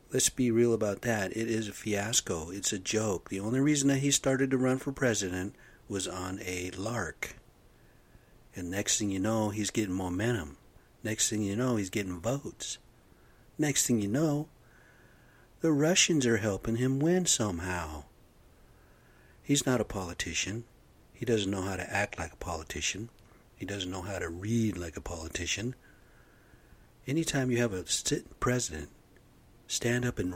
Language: English